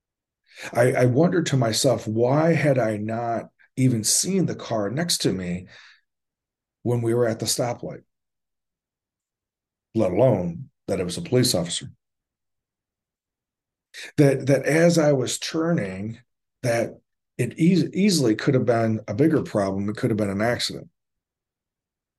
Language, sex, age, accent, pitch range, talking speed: English, male, 40-59, American, 105-140 Hz, 140 wpm